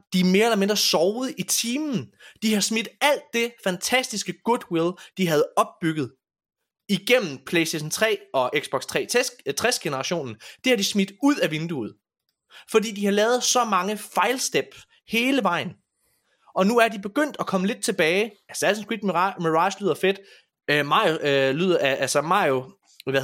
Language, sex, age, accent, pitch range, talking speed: Danish, male, 20-39, native, 165-220 Hz, 170 wpm